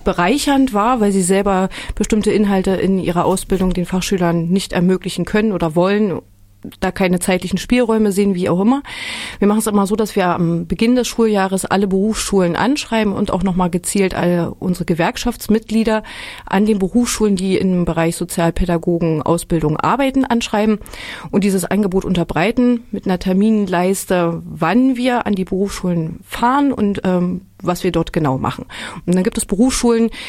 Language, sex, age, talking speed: German, female, 30-49, 160 wpm